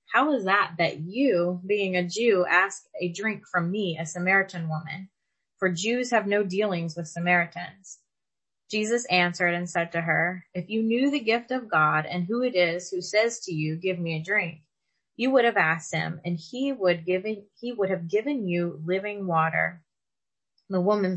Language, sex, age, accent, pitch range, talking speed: English, female, 20-39, American, 170-215 Hz, 185 wpm